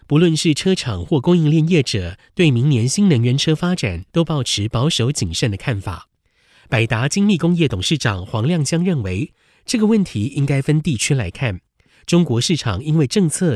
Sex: male